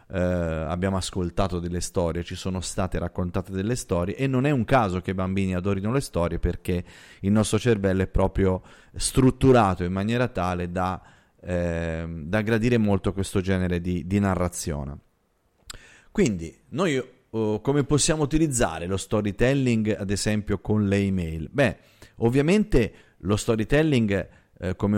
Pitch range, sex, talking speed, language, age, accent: 90-115 Hz, male, 135 wpm, Italian, 30-49, native